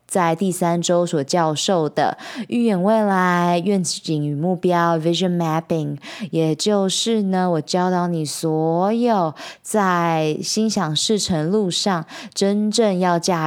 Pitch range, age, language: 160-205 Hz, 20-39, Chinese